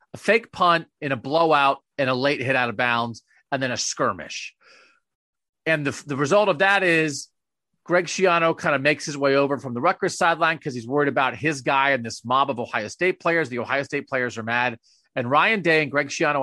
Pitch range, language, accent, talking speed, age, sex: 135-180 Hz, English, American, 220 wpm, 40-59, male